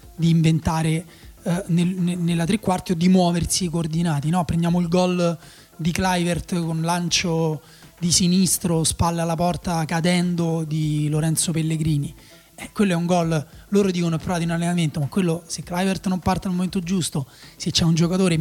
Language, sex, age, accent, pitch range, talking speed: Italian, male, 20-39, native, 160-185 Hz, 170 wpm